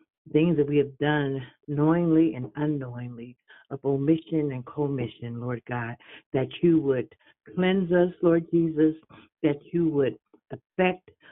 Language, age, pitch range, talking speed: English, 60-79, 135-170 Hz, 135 wpm